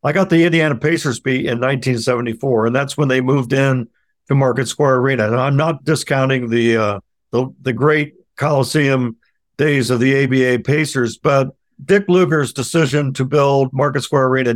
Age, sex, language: 60-79, male, English